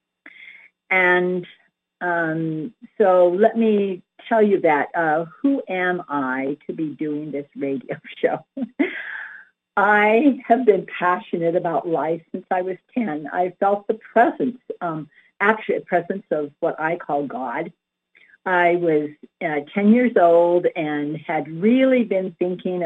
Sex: female